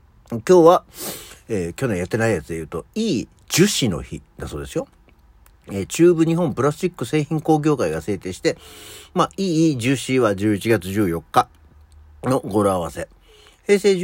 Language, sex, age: Japanese, male, 60-79